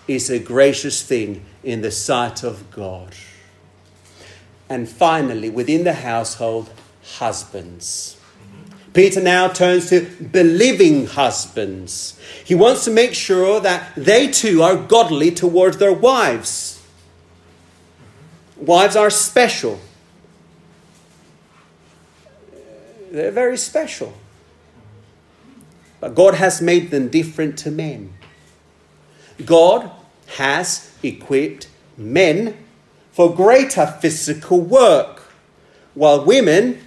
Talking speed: 95 wpm